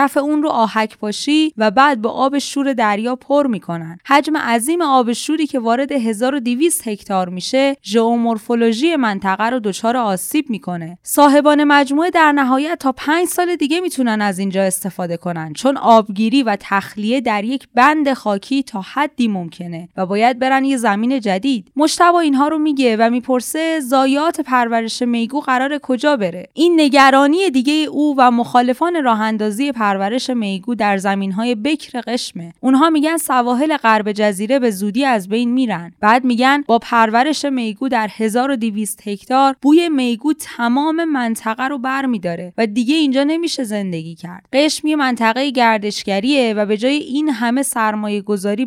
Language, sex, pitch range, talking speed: Persian, female, 210-280 Hz, 160 wpm